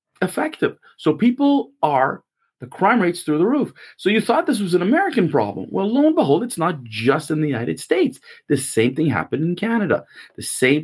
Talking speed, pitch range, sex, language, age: 205 wpm, 130-200 Hz, male, English, 40-59